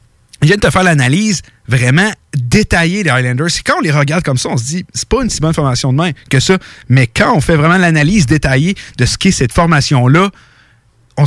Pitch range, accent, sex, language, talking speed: 135-185 Hz, Canadian, male, French, 235 wpm